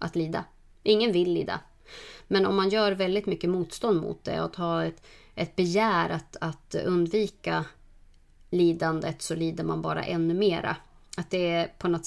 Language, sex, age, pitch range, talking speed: Swedish, female, 30-49, 165-215 Hz, 170 wpm